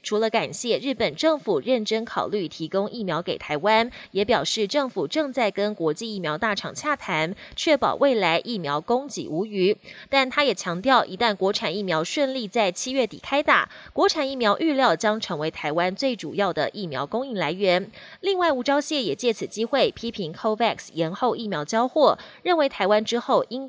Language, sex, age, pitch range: Chinese, female, 20-39, 190-265 Hz